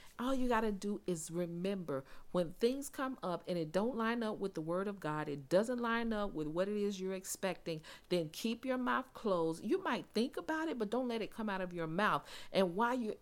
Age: 50-69